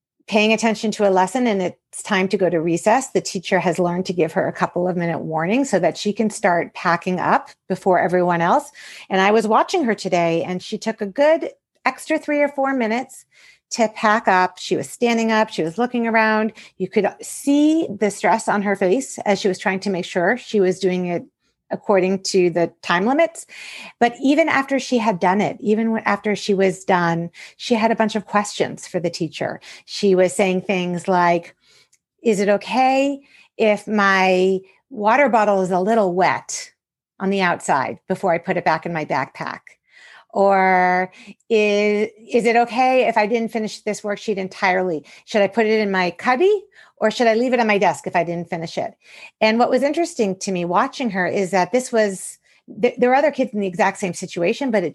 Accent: American